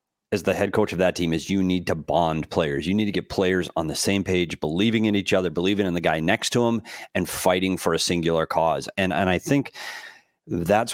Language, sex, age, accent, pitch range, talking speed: English, male, 30-49, American, 90-110 Hz, 240 wpm